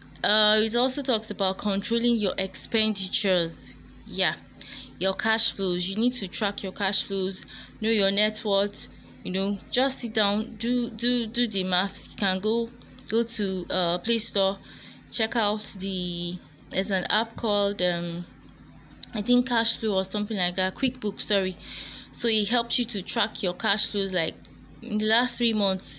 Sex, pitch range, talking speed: female, 190-230 Hz, 170 wpm